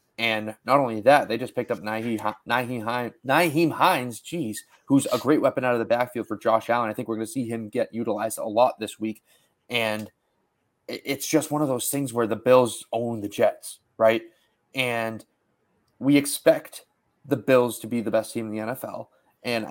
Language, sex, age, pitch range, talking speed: English, male, 30-49, 110-120 Hz, 190 wpm